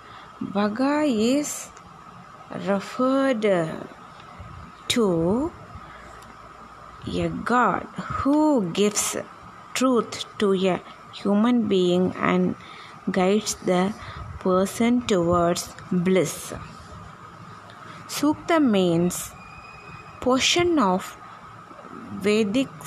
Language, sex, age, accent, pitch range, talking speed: Tamil, female, 20-39, native, 185-250 Hz, 65 wpm